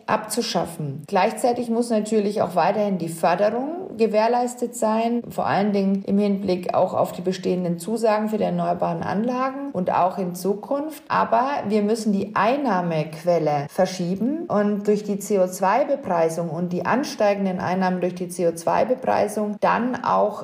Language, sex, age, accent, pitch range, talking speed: German, female, 40-59, German, 180-225 Hz, 140 wpm